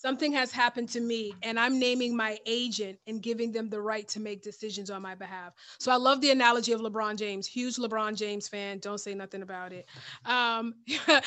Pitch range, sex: 215-245 Hz, female